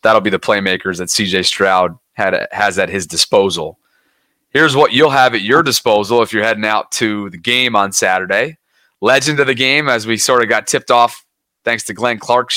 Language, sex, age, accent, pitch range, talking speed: English, male, 30-49, American, 110-140 Hz, 200 wpm